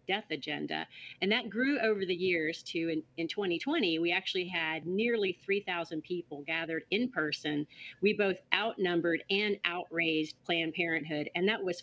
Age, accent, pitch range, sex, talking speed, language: 40-59, American, 160-195 Hz, female, 155 wpm, English